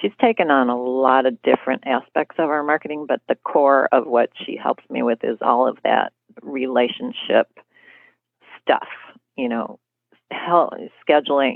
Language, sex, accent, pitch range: English, female, American, 130-160 Hz